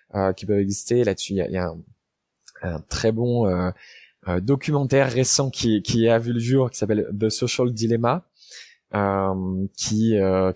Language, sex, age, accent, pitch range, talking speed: French, male, 20-39, French, 100-125 Hz, 180 wpm